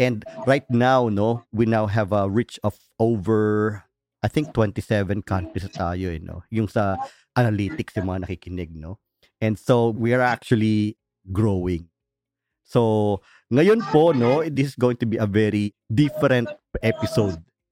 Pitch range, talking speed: 100-135 Hz, 150 wpm